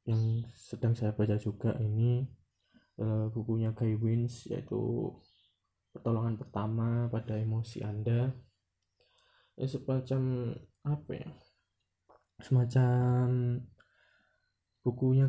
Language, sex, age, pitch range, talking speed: Indonesian, male, 20-39, 115-130 Hz, 80 wpm